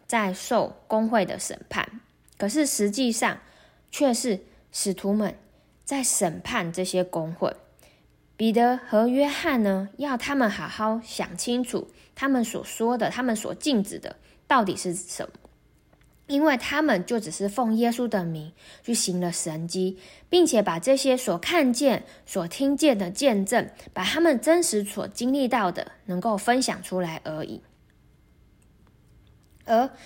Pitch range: 185-250 Hz